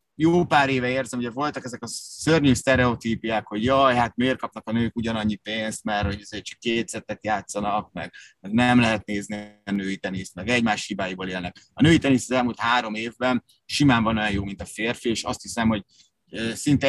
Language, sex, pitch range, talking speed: Hungarian, male, 105-125 Hz, 190 wpm